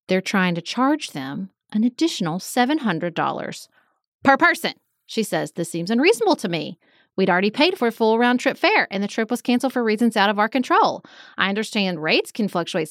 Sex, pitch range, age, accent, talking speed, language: female, 185-245 Hz, 30-49, American, 195 wpm, English